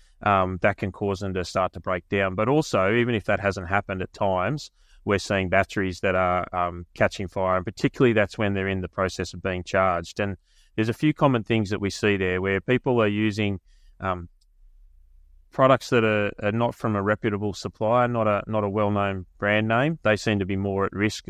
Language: English